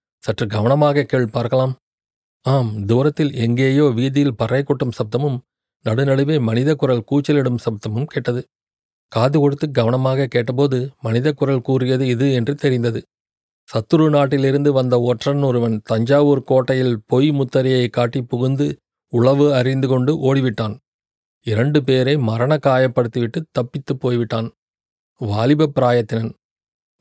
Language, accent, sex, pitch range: Tamil, native, male, 115-135 Hz